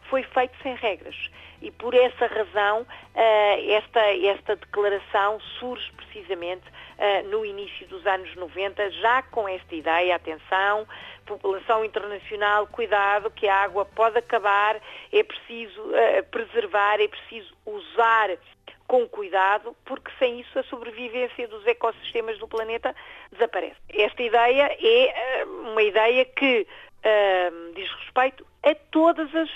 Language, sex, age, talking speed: Portuguese, female, 40-59, 120 wpm